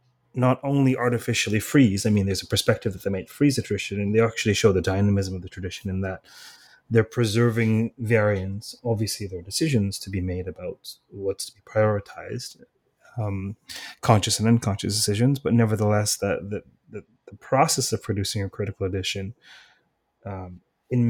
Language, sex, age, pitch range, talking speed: English, male, 30-49, 100-125 Hz, 170 wpm